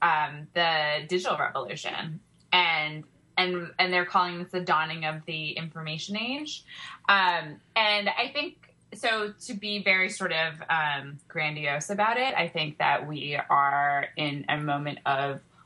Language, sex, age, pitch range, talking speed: English, female, 20-39, 145-170 Hz, 150 wpm